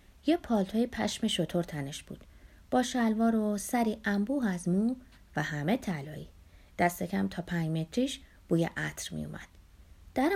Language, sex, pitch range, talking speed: Persian, female, 175-255 Hz, 150 wpm